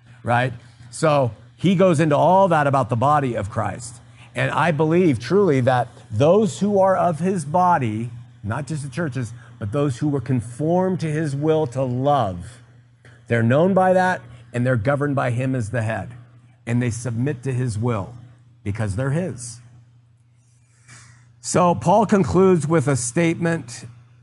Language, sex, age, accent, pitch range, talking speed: English, male, 50-69, American, 120-165 Hz, 160 wpm